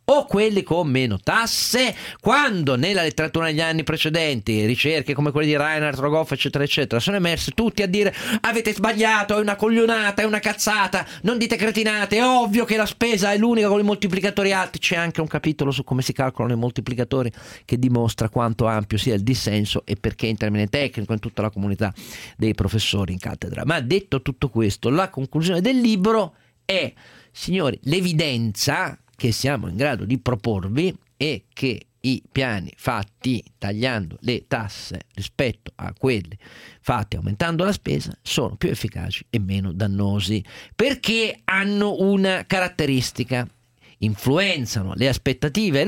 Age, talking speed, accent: 40-59, 160 wpm, native